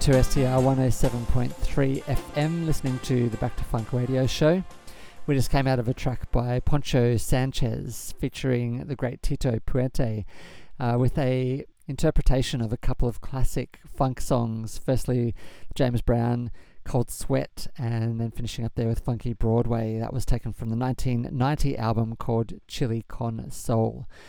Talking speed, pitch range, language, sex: 155 wpm, 115-130 Hz, English, male